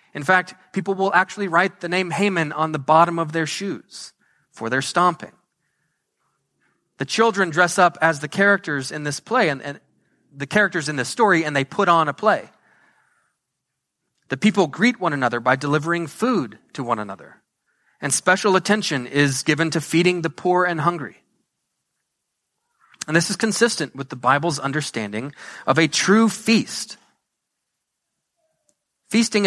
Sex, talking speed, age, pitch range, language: male, 155 wpm, 30-49, 140-185 Hz, English